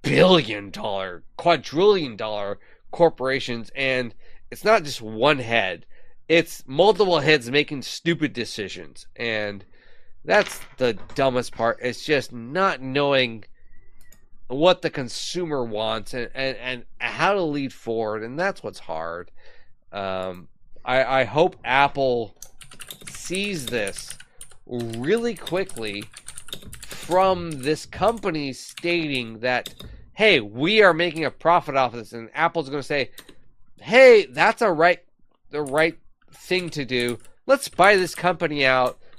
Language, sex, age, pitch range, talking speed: English, male, 30-49, 120-170 Hz, 125 wpm